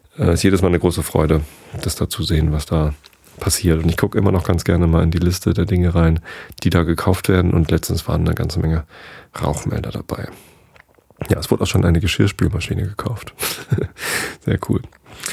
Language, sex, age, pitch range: German, male, 30-49, 85-105 Hz